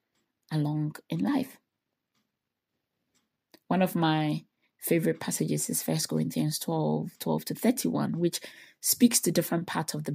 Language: English